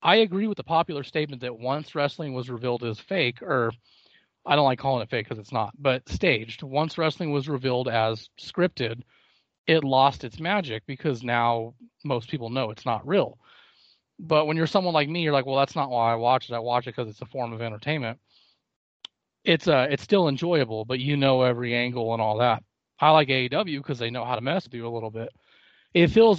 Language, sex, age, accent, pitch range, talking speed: English, male, 30-49, American, 120-150 Hz, 215 wpm